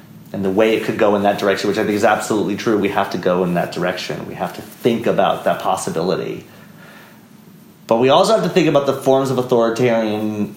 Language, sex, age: English, male, 30-49